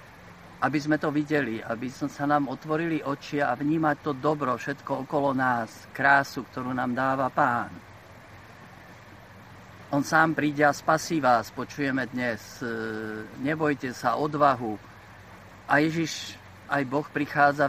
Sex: male